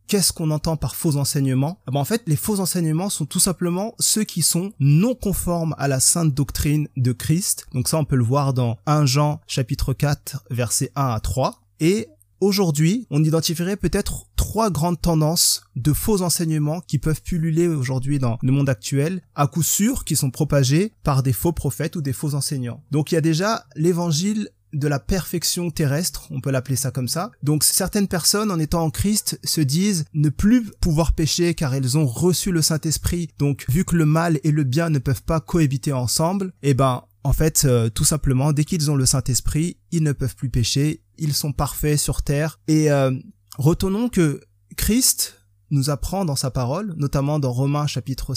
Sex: male